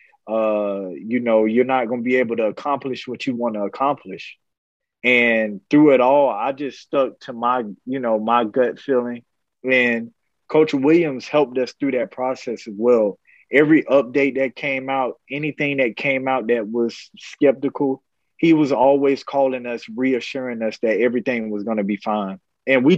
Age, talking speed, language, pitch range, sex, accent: 30-49, 180 wpm, English, 110-135 Hz, male, American